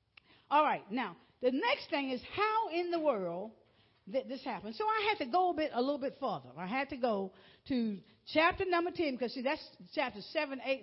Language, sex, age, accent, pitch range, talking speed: English, female, 50-69, American, 245-360 Hz, 220 wpm